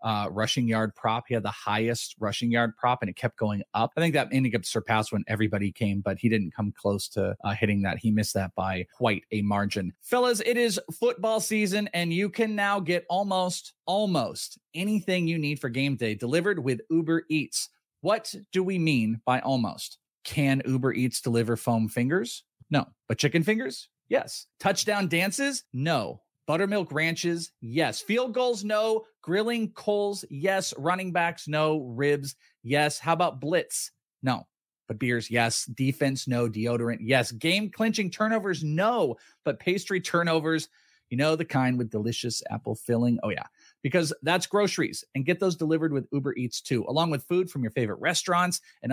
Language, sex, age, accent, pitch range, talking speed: English, male, 30-49, American, 120-180 Hz, 175 wpm